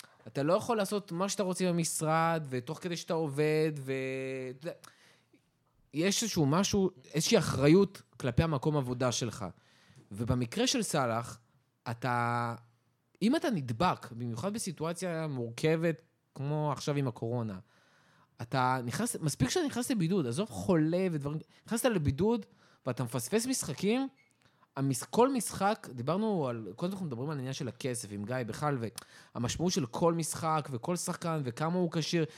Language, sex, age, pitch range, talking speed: Hebrew, male, 20-39, 125-180 Hz, 135 wpm